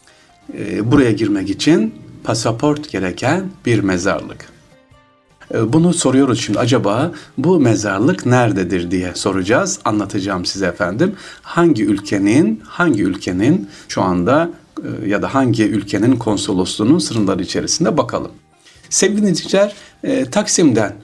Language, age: Turkish, 60-79